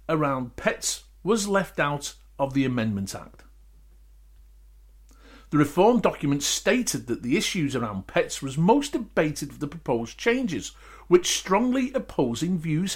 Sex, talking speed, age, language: male, 135 wpm, 50-69, English